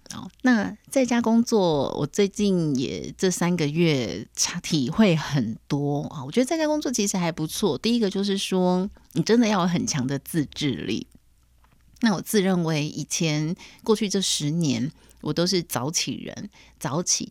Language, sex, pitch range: Chinese, female, 145-215 Hz